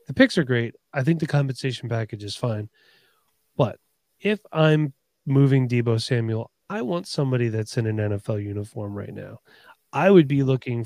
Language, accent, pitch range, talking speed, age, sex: English, American, 115-145 Hz, 170 wpm, 30-49, male